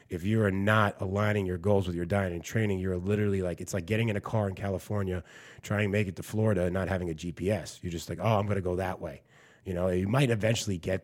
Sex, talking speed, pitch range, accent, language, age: male, 270 wpm, 85-105 Hz, American, English, 30-49